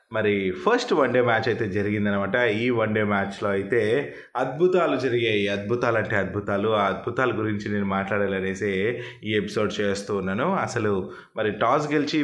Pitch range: 105-135 Hz